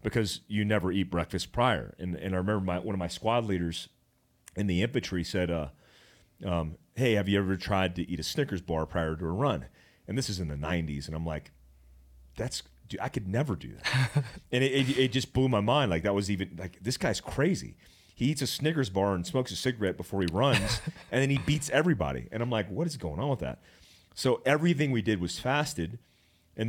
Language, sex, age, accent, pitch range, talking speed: English, male, 30-49, American, 85-115 Hz, 225 wpm